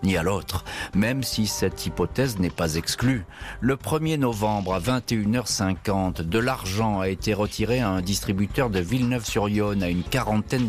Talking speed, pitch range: 155 wpm, 95-120 Hz